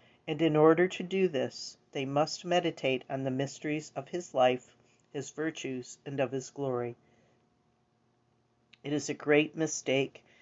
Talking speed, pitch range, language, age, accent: 150 wpm, 125-155 Hz, English, 40-59, American